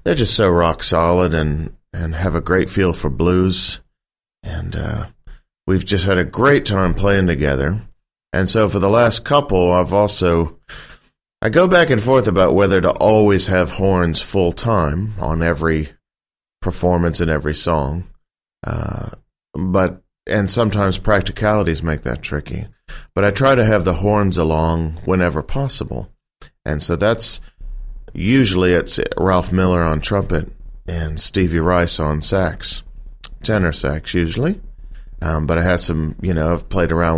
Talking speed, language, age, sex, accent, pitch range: 155 wpm, English, 40-59, male, American, 80-100 Hz